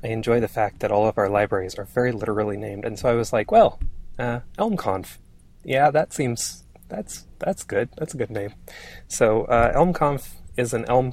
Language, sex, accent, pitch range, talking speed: English, male, American, 105-135 Hz, 200 wpm